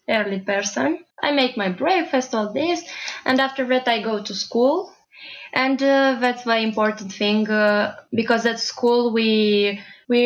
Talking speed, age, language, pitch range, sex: 160 wpm, 20-39, English, 210-260 Hz, female